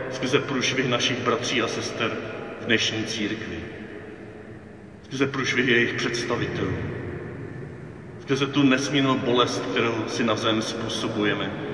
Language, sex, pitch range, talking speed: Czech, male, 105-120 Hz, 105 wpm